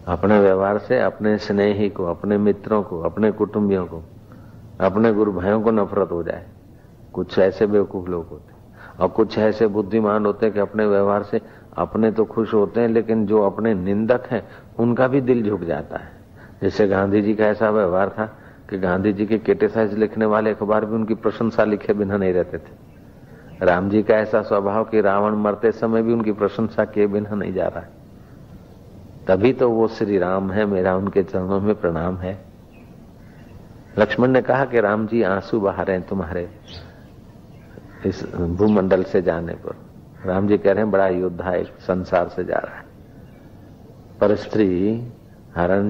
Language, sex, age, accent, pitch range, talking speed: Hindi, male, 60-79, native, 95-110 Hz, 130 wpm